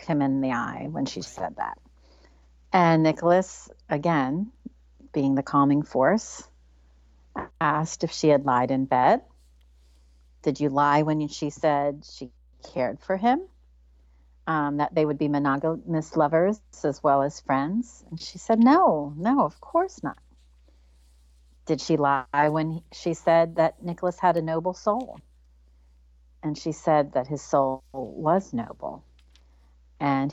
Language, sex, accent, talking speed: English, female, American, 140 wpm